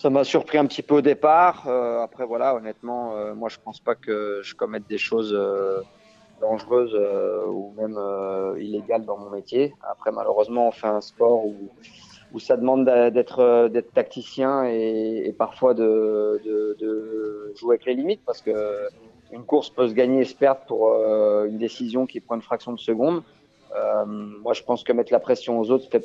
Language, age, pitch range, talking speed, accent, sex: French, 30-49, 105-145 Hz, 205 wpm, French, male